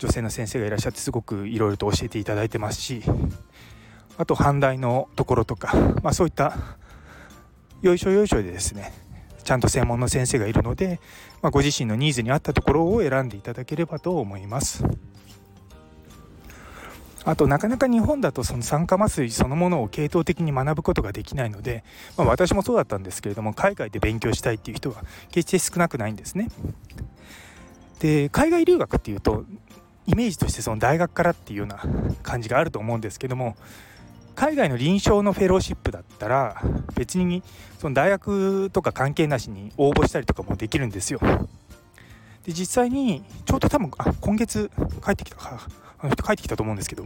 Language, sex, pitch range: Japanese, male, 105-165 Hz